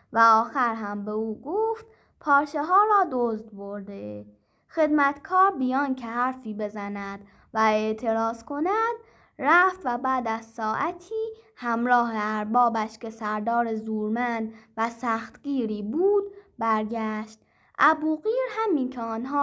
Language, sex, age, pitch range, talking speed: Persian, female, 10-29, 220-290 Hz, 115 wpm